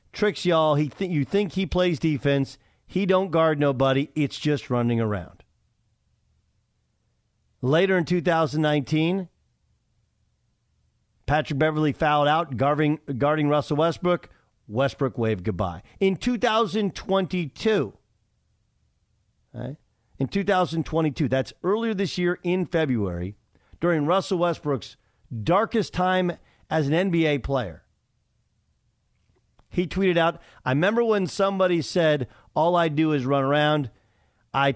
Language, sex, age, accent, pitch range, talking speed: English, male, 50-69, American, 130-185 Hz, 115 wpm